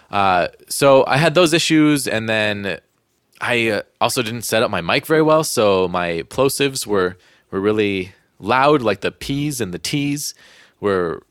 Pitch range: 110-145 Hz